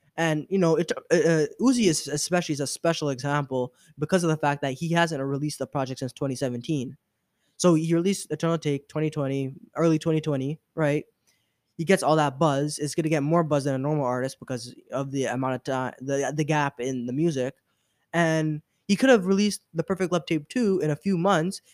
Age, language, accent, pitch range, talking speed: 20-39, English, American, 140-170 Hz, 205 wpm